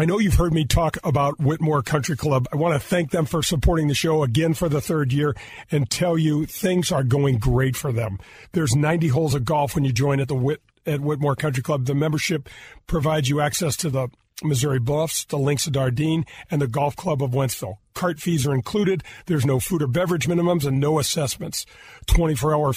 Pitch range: 145-170 Hz